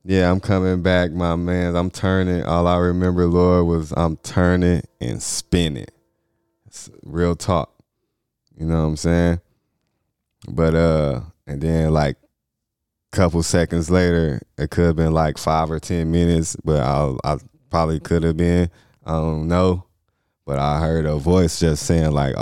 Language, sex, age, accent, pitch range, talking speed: English, male, 20-39, American, 80-85 Hz, 165 wpm